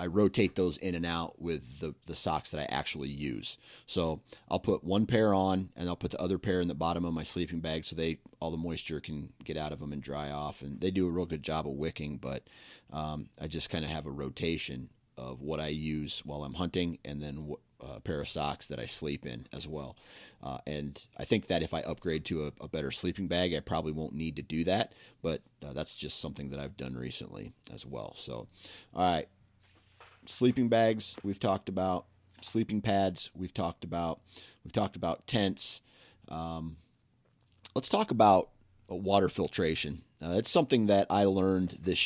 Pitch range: 75-95 Hz